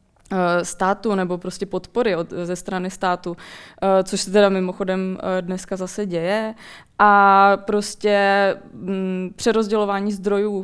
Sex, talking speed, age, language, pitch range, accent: female, 100 wpm, 20-39, Czech, 190-210 Hz, native